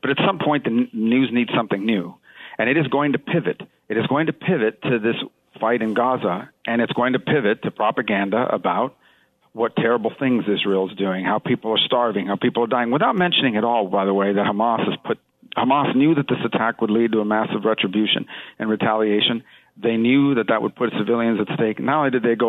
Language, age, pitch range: English, 50-69, 110-125 Hz